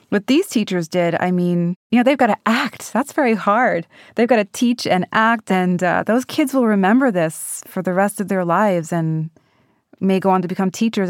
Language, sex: English, female